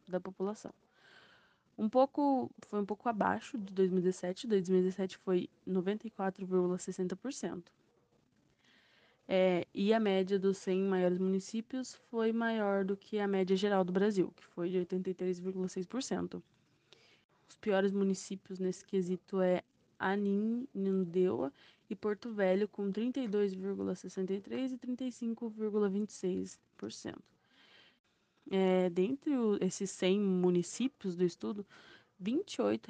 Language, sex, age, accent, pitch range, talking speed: Portuguese, female, 20-39, Brazilian, 185-215 Hz, 100 wpm